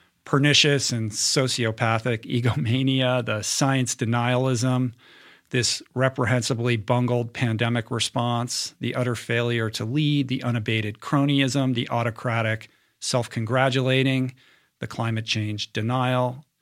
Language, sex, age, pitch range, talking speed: English, male, 50-69, 115-135 Hz, 100 wpm